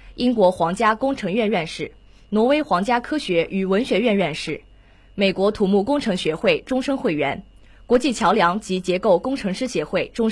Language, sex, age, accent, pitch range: Chinese, female, 20-39, native, 175-235 Hz